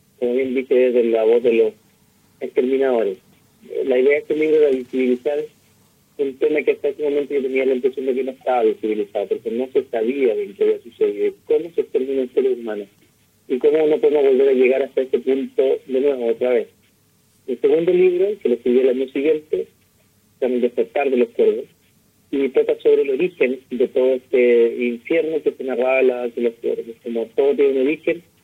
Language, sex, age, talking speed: Spanish, male, 40-59, 205 wpm